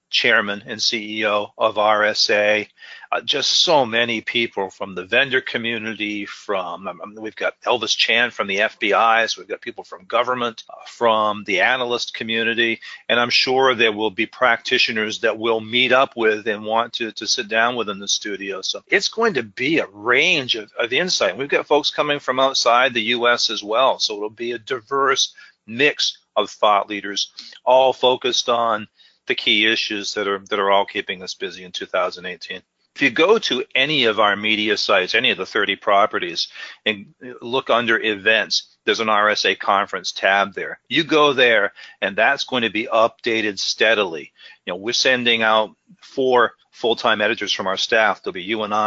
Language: English